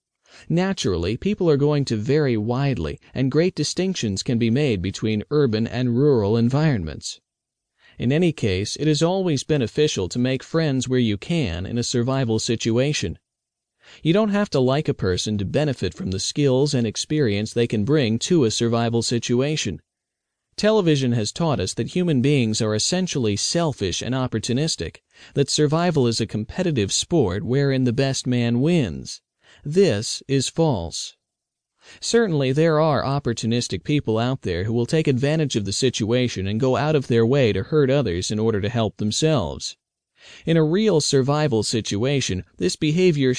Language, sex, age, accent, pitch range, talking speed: English, male, 40-59, American, 115-155 Hz, 160 wpm